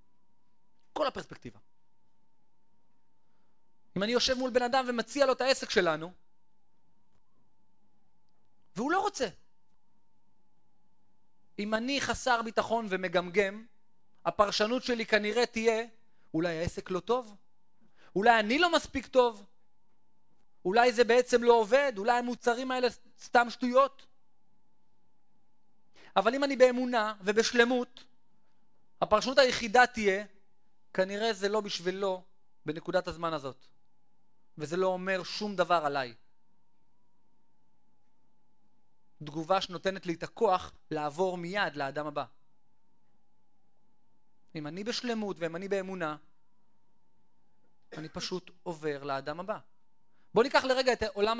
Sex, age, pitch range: male, 30-49, 185-245 Hz